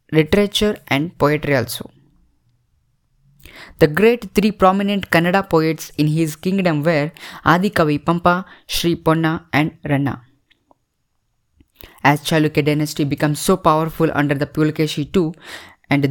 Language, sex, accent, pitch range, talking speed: English, female, Indian, 150-185 Hz, 115 wpm